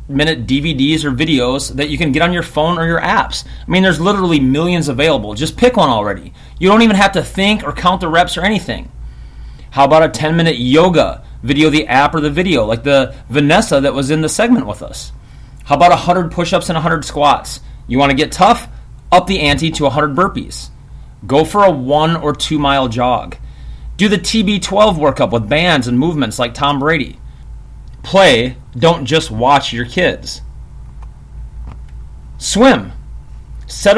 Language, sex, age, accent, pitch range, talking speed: English, male, 30-49, American, 125-185 Hz, 180 wpm